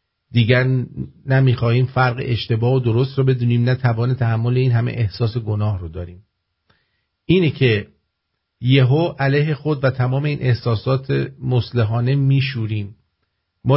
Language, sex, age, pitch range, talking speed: English, male, 50-69, 110-135 Hz, 125 wpm